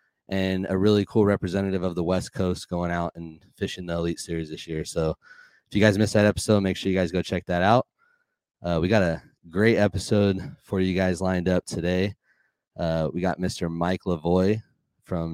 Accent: American